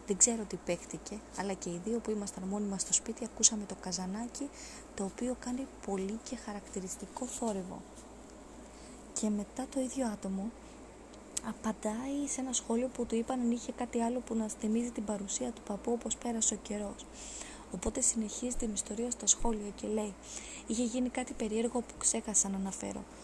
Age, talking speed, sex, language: 20-39, 170 wpm, female, Greek